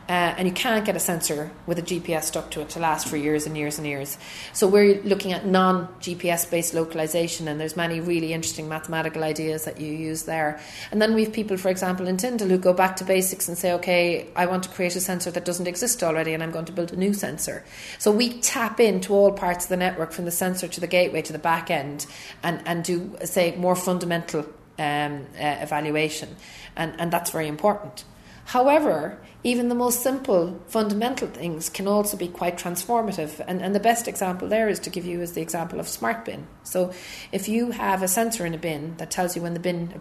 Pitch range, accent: 160-185 Hz, Irish